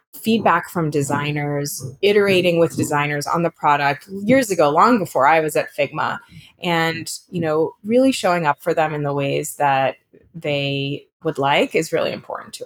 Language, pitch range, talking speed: English, 150-185 Hz, 170 wpm